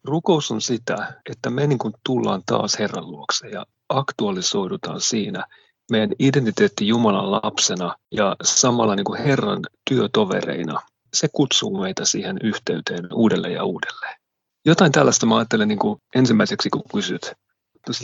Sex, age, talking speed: male, 40-59, 135 wpm